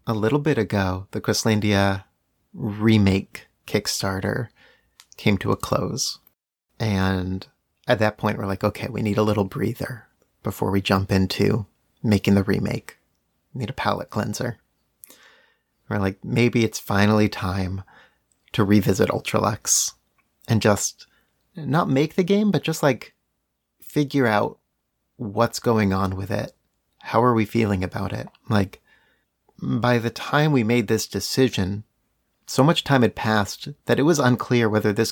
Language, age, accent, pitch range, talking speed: English, 30-49, American, 100-125 Hz, 145 wpm